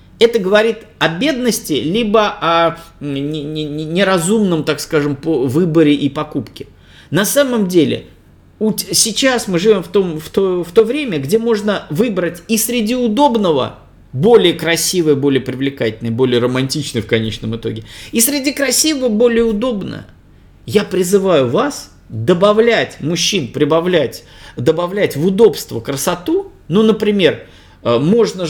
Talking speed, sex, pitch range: 125 wpm, male, 135-215 Hz